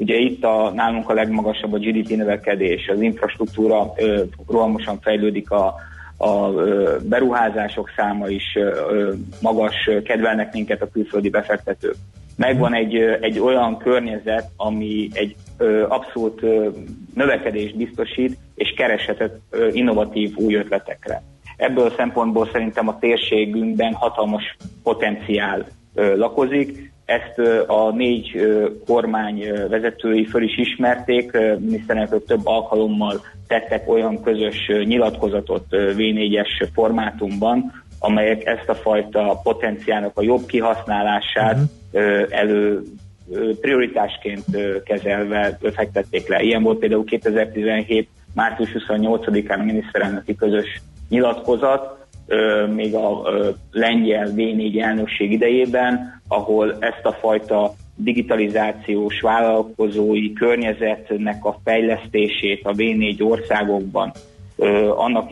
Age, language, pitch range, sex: 30-49, Hungarian, 105-115 Hz, male